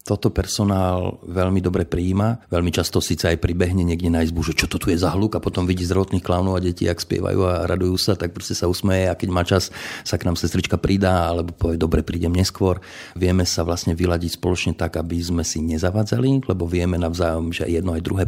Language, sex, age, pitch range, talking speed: Slovak, male, 40-59, 85-100 Hz, 220 wpm